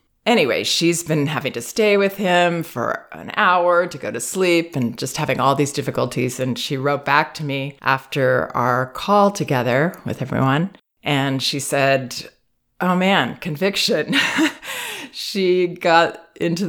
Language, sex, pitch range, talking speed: English, female, 135-175 Hz, 150 wpm